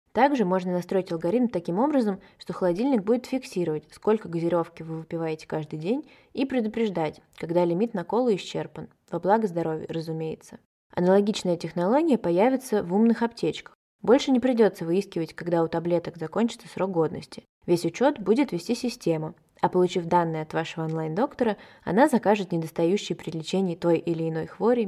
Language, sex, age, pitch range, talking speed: Russian, female, 20-39, 170-220 Hz, 150 wpm